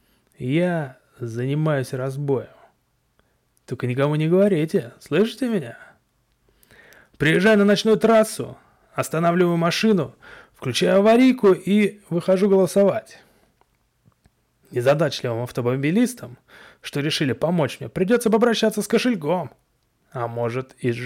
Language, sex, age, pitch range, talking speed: Russian, male, 30-49, 140-205 Hz, 95 wpm